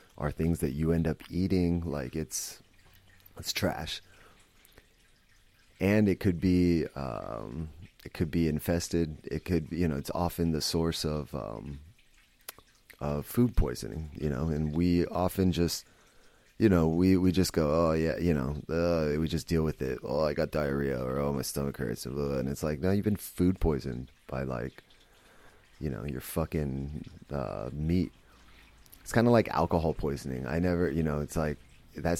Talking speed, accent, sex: 180 wpm, American, male